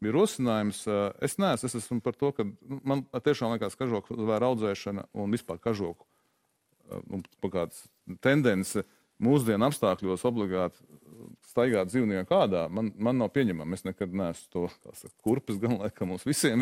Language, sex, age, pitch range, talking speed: English, male, 40-59, 100-145 Hz, 150 wpm